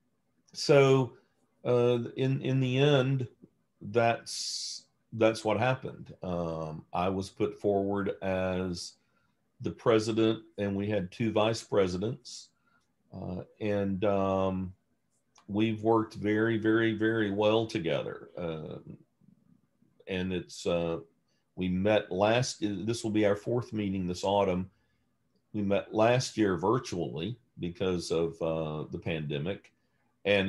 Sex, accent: male, American